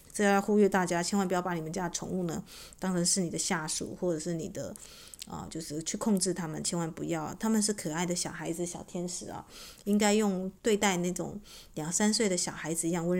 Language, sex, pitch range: Chinese, female, 170-200 Hz